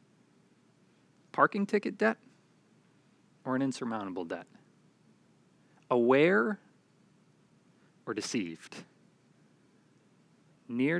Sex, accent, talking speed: male, American, 60 wpm